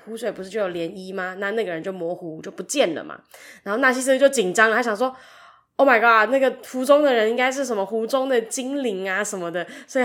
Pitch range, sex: 195-245 Hz, female